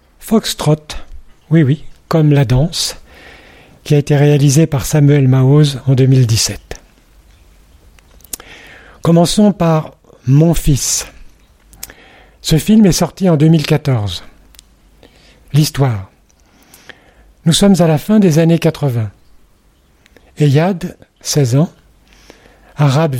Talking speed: 100 wpm